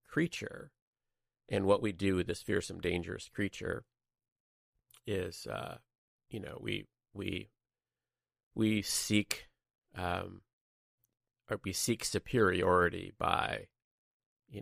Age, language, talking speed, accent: 30-49, English, 105 wpm, American